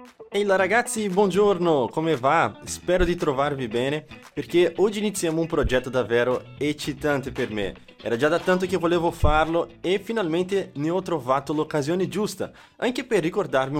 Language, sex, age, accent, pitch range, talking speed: Italian, male, 20-39, Brazilian, 135-185 Hz, 150 wpm